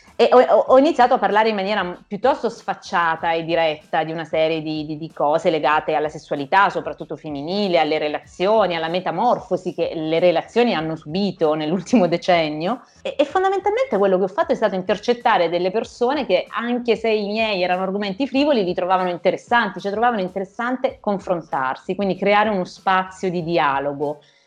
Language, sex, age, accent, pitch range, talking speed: Italian, female, 30-49, native, 160-210 Hz, 165 wpm